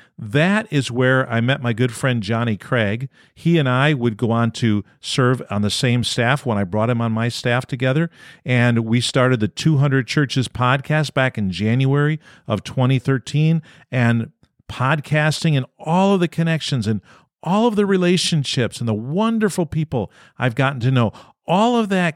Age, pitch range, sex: 50-69, 120-165 Hz, male